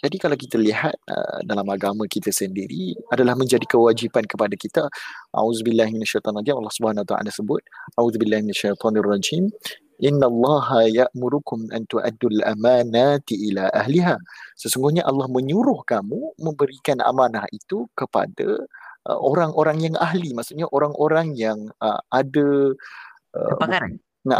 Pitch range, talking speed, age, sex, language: 115-160 Hz, 120 wpm, 30-49, male, Malay